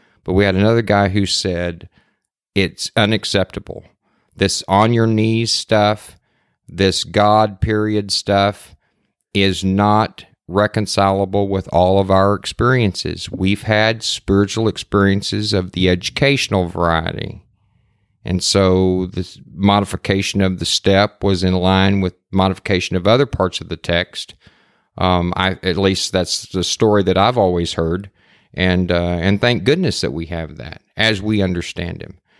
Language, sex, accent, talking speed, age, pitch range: English, male, American, 135 wpm, 40-59, 90-105 Hz